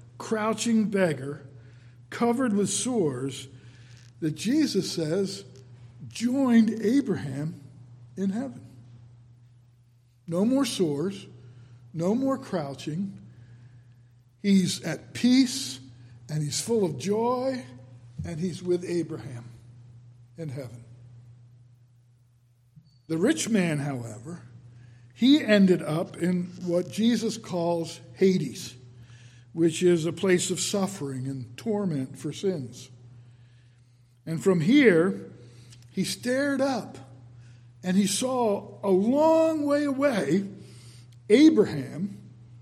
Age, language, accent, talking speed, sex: 60-79, English, American, 95 wpm, male